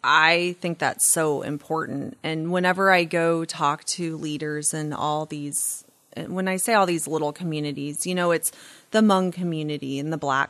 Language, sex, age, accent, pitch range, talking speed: English, female, 30-49, American, 155-185 Hz, 175 wpm